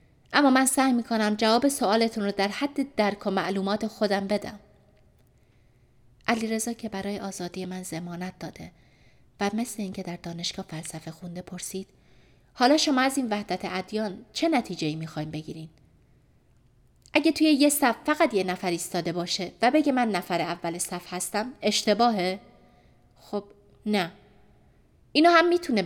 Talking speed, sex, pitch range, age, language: 140 wpm, female, 185-265 Hz, 30-49, Persian